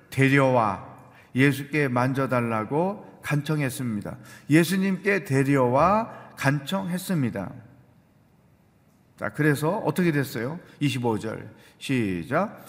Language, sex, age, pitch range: Korean, male, 40-59, 135-190 Hz